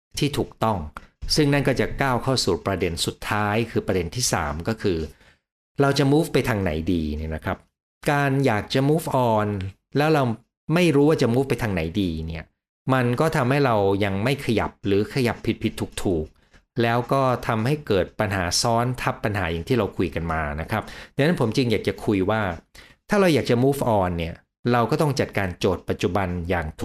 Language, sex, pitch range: Thai, male, 90-130 Hz